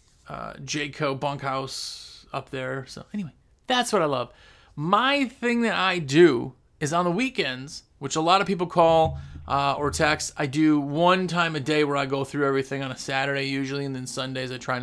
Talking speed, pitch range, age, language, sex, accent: 200 wpm, 140-180 Hz, 30-49, English, male, American